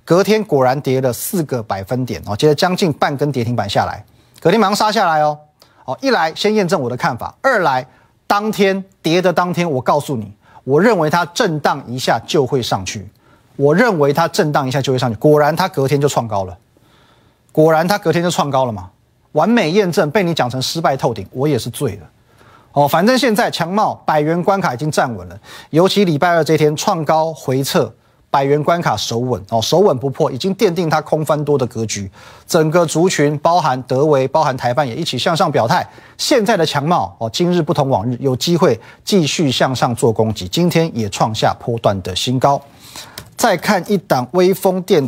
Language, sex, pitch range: Chinese, male, 120-175 Hz